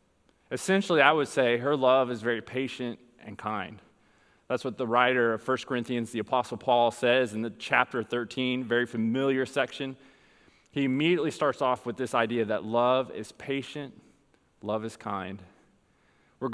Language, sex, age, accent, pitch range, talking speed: English, male, 20-39, American, 115-145 Hz, 160 wpm